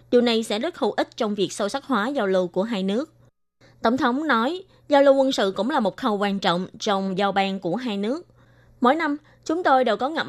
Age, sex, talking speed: 20-39, female, 245 wpm